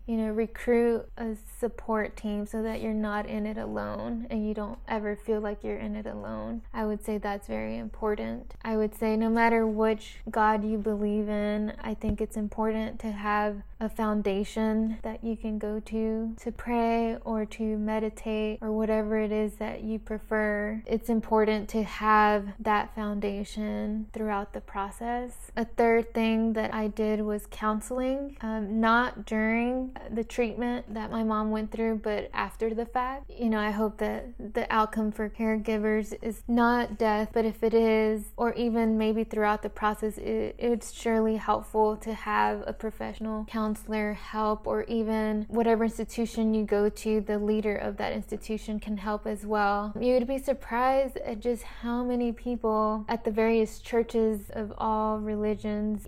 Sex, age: female, 20-39